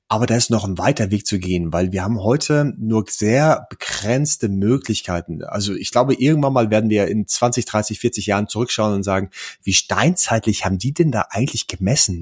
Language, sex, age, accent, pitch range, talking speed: German, male, 30-49, German, 100-120 Hz, 195 wpm